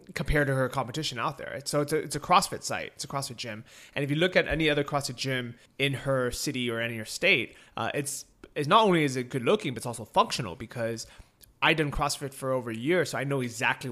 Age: 20-39